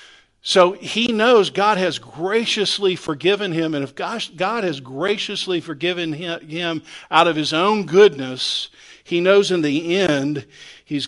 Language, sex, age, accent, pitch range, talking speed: English, male, 50-69, American, 120-175 Hz, 140 wpm